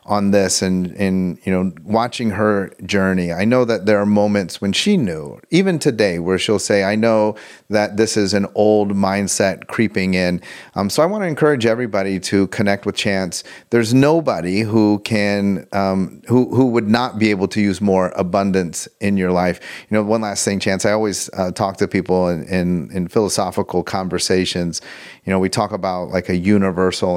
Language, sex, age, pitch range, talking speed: English, male, 30-49, 90-110 Hz, 190 wpm